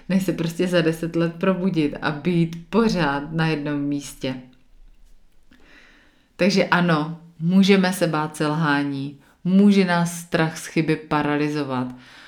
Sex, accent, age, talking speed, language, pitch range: female, native, 30-49, 115 wpm, Czech, 150-175 Hz